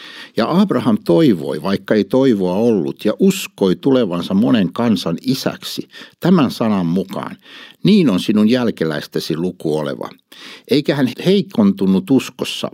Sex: male